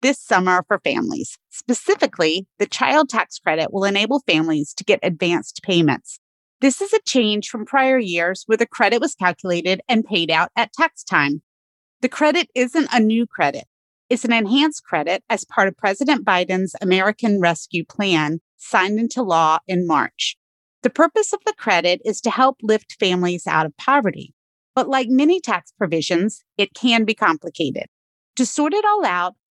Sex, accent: female, American